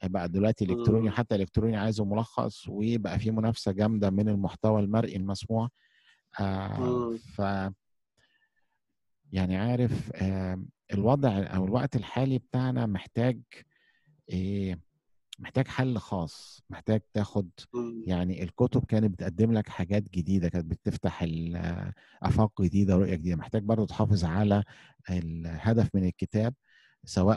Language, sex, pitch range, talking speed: Arabic, male, 95-115 Hz, 115 wpm